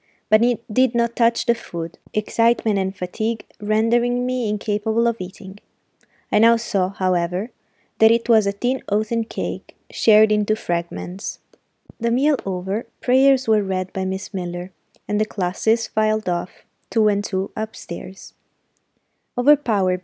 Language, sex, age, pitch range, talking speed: Italian, female, 20-39, 190-230 Hz, 145 wpm